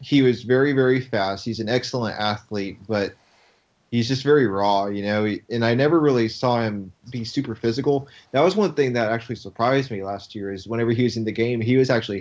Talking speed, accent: 220 wpm, American